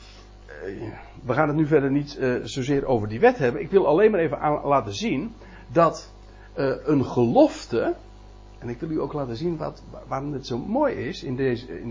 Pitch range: 105-135 Hz